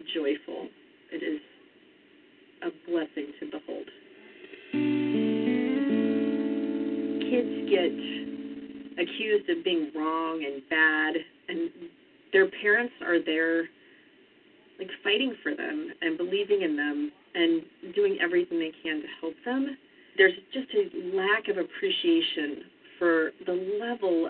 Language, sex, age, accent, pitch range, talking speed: English, female, 40-59, American, 260-355 Hz, 110 wpm